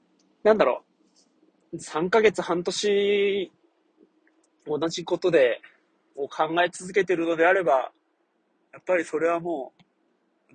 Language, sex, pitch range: Japanese, male, 125-180 Hz